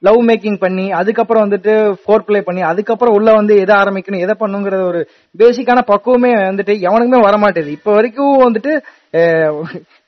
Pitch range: 195-245 Hz